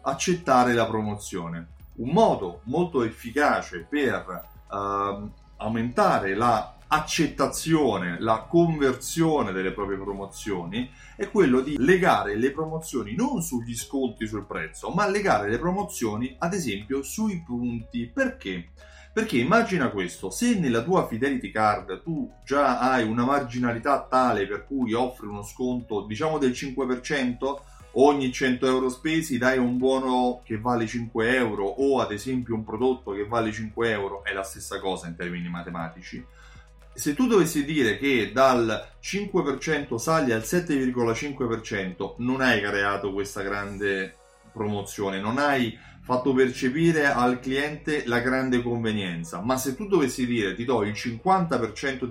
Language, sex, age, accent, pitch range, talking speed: Italian, male, 30-49, native, 105-135 Hz, 135 wpm